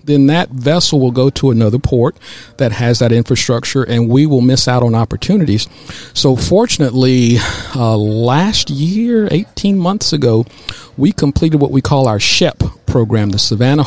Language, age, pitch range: English, 50-69, 115-140 Hz